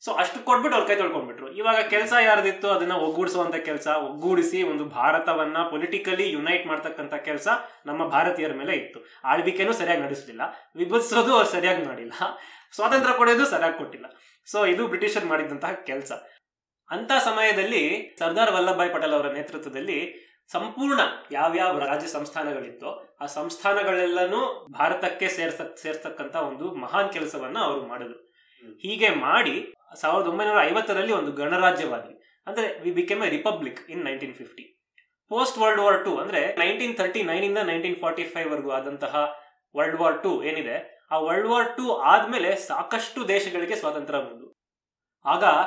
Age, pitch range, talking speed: 20-39, 160-235 Hz, 130 wpm